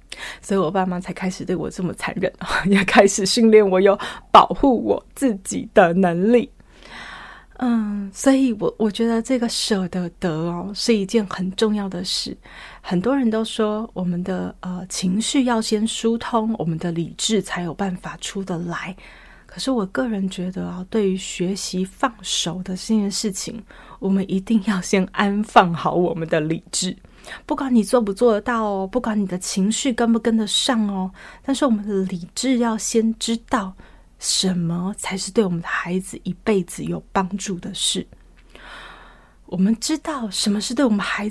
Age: 20-39